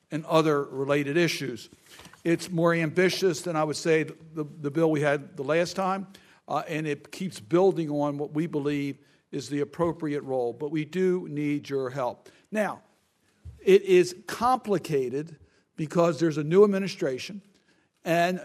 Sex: male